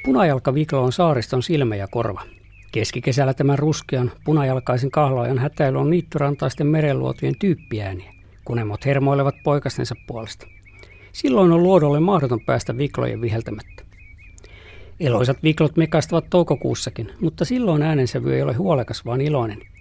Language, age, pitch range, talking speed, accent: Finnish, 50-69, 100-150 Hz, 120 wpm, native